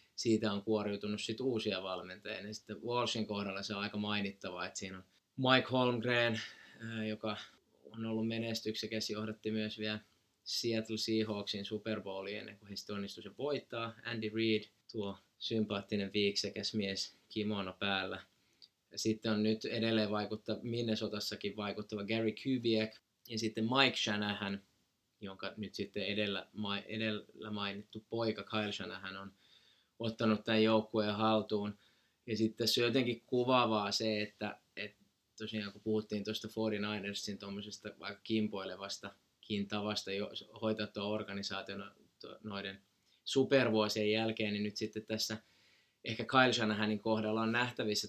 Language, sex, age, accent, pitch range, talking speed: Finnish, male, 20-39, native, 100-110 Hz, 125 wpm